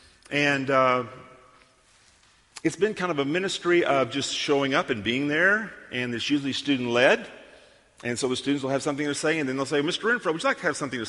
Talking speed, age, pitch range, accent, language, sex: 220 wpm, 50-69, 120-150 Hz, American, English, male